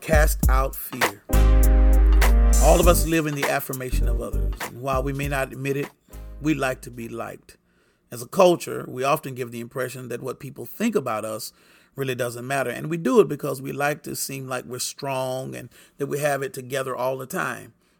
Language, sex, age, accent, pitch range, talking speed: English, male, 40-59, American, 130-165 Hz, 205 wpm